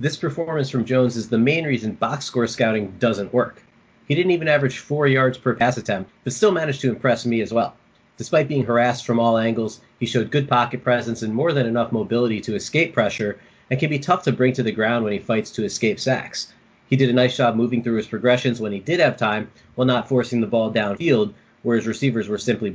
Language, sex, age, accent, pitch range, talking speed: English, male, 30-49, American, 115-130 Hz, 235 wpm